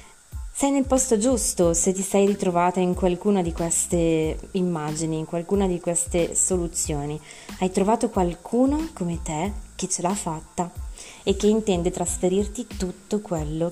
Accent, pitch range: native, 165-200 Hz